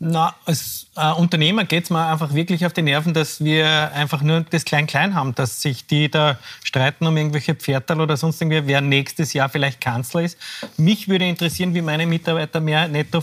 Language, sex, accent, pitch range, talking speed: German, male, Austrian, 145-170 Hz, 200 wpm